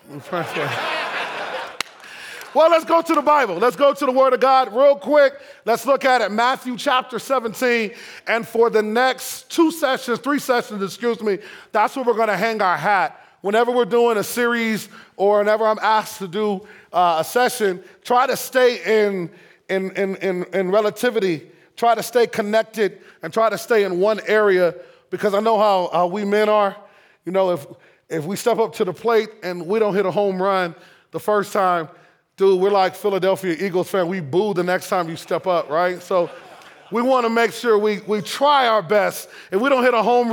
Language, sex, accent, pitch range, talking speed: English, male, American, 185-245 Hz, 195 wpm